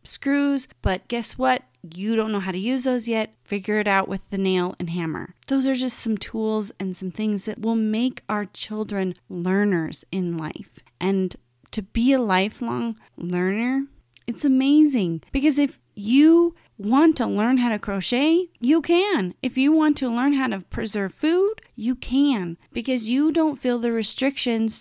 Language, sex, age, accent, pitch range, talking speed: English, female, 30-49, American, 195-270 Hz, 175 wpm